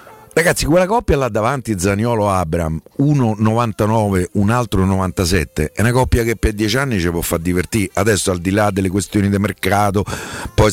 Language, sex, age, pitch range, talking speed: Italian, male, 50-69, 100-145 Hz, 180 wpm